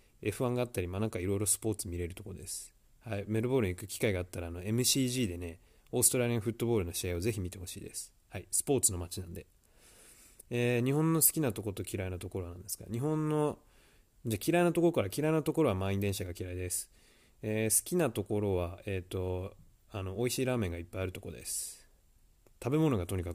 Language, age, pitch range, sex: Japanese, 20-39, 90-125 Hz, male